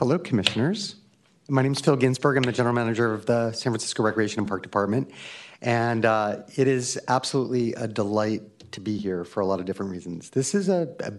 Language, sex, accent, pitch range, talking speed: English, male, American, 105-125 Hz, 210 wpm